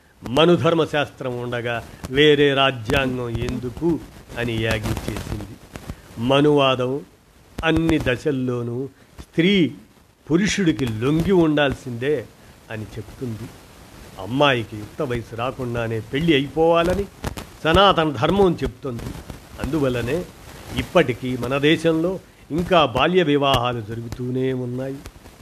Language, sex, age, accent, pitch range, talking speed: Telugu, male, 50-69, native, 110-150 Hz, 85 wpm